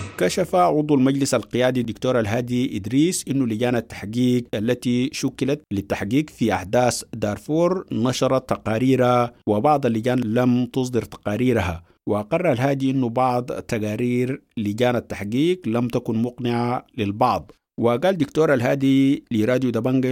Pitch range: 110-130 Hz